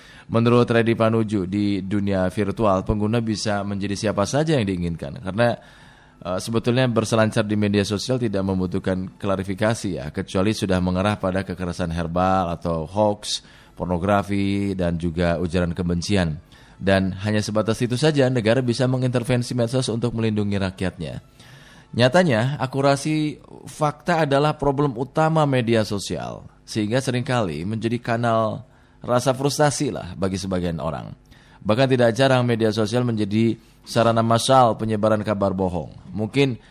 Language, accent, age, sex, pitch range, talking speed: Indonesian, native, 20-39, male, 95-120 Hz, 130 wpm